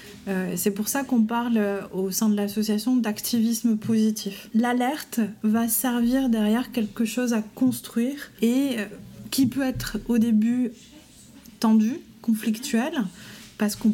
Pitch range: 210-250 Hz